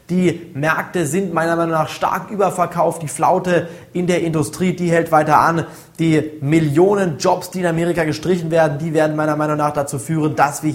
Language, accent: German, German